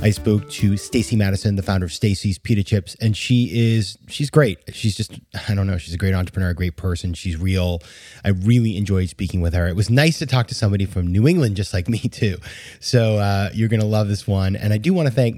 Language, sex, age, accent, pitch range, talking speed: English, male, 30-49, American, 100-130 Hz, 250 wpm